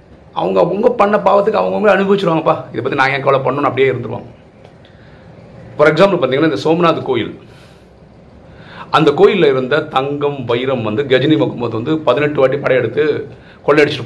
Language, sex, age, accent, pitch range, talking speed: Tamil, male, 40-59, native, 125-160 Hz, 135 wpm